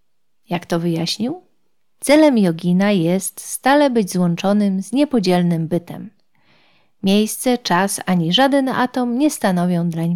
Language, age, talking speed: English, 40-59, 120 wpm